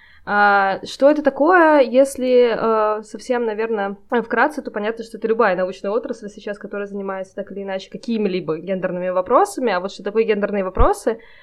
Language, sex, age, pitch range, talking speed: Russian, female, 20-39, 195-230 Hz, 150 wpm